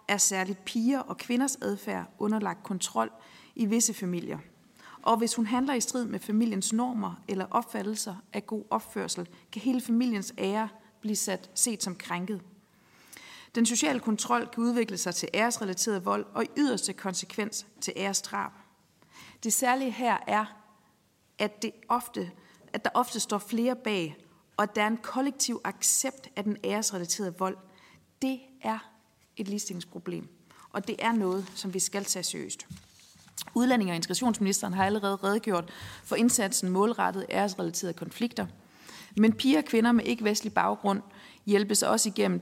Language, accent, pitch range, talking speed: Danish, native, 190-230 Hz, 150 wpm